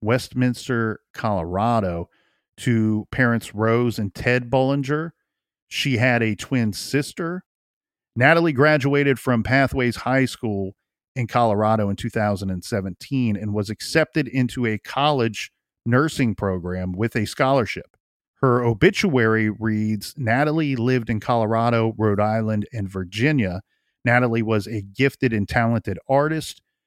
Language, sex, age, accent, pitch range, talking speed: English, male, 40-59, American, 110-145 Hz, 115 wpm